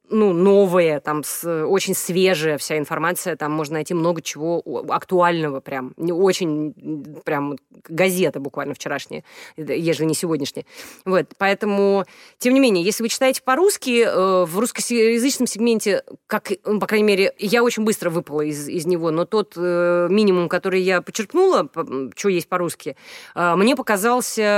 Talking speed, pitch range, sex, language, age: 145 wpm, 160-205 Hz, female, Russian, 20-39